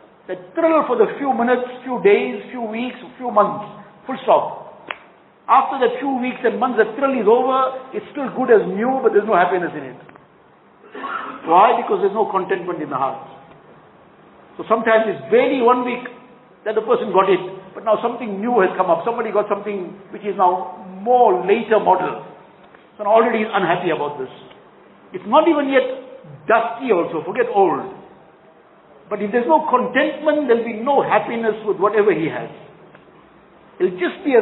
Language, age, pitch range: English, 60-79, 180-250 Hz